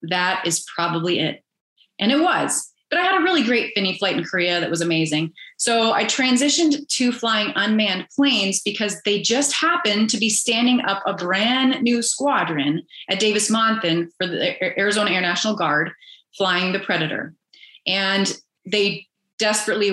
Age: 30-49